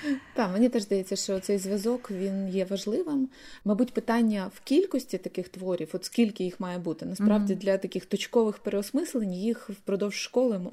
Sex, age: female, 20-39